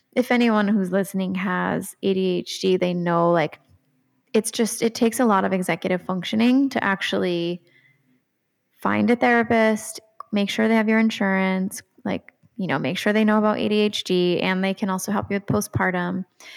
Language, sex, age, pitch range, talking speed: English, female, 10-29, 180-210 Hz, 165 wpm